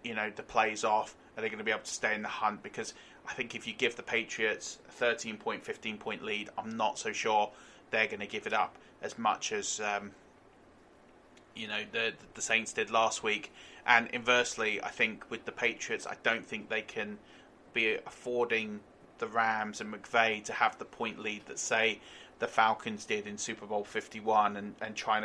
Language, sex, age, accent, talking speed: English, male, 30-49, British, 205 wpm